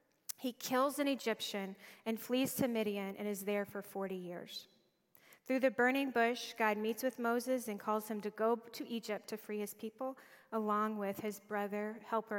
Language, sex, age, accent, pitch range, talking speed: English, female, 20-39, American, 200-235 Hz, 185 wpm